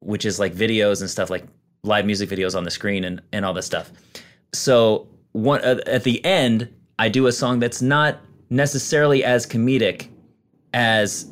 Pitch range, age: 110-130 Hz, 30-49